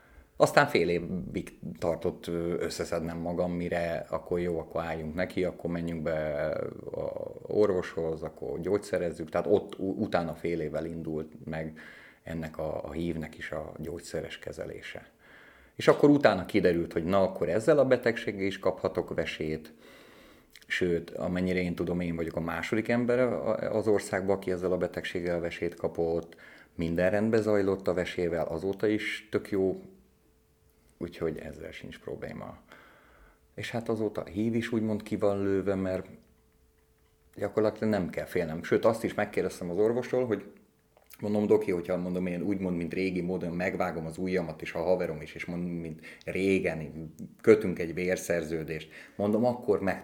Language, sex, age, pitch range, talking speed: Hungarian, male, 30-49, 80-95 Hz, 150 wpm